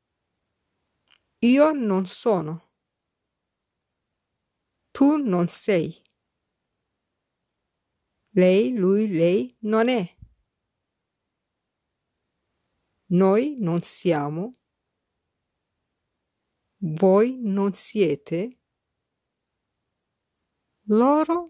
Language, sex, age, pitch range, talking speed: English, female, 50-69, 180-230 Hz, 50 wpm